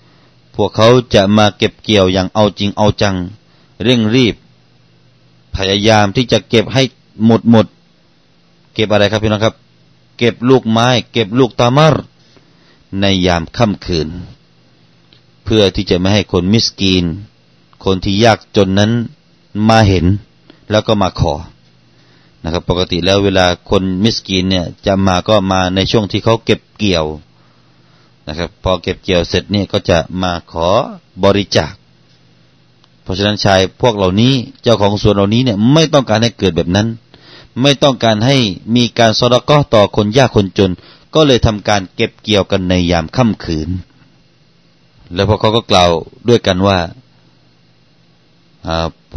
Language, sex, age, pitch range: Thai, male, 30-49, 90-115 Hz